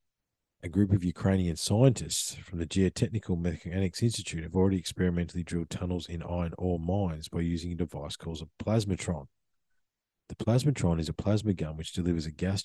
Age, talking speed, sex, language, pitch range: 40-59, 170 wpm, male, English, 85-100 Hz